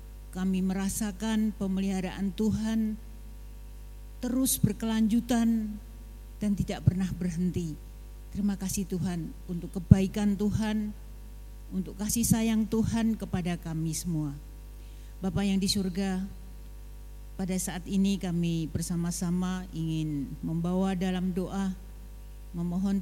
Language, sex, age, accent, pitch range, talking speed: Indonesian, female, 50-69, native, 175-205 Hz, 95 wpm